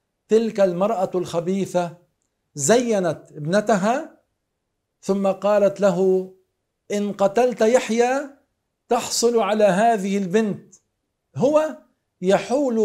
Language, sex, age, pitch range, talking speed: Arabic, male, 50-69, 175-220 Hz, 80 wpm